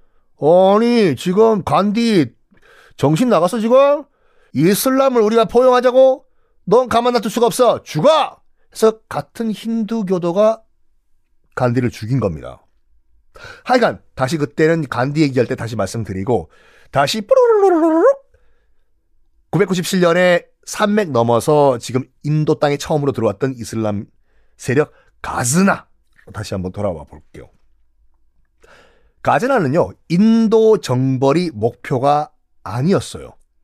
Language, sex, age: Korean, male, 40-59